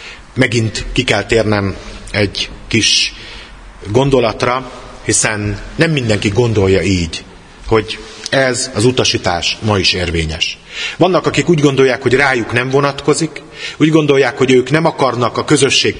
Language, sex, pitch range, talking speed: Hungarian, male, 110-140 Hz, 130 wpm